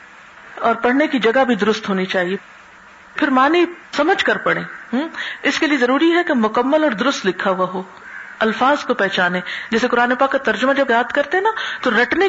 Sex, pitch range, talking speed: female, 215-280 Hz, 190 wpm